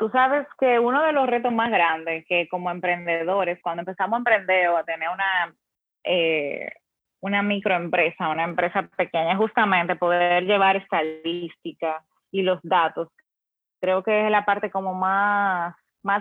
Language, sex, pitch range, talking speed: Spanish, female, 180-220 Hz, 150 wpm